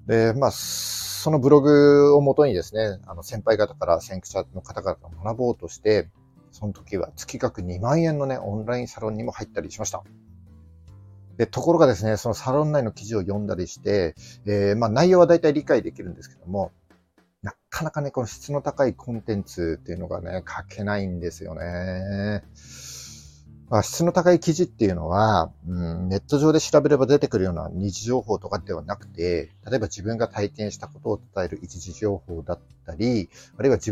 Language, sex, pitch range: Japanese, male, 90-125 Hz